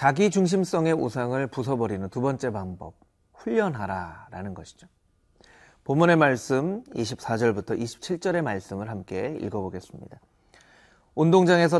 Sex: male